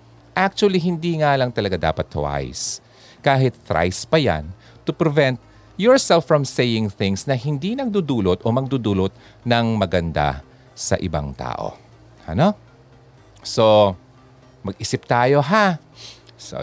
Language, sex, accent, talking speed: Filipino, male, native, 125 wpm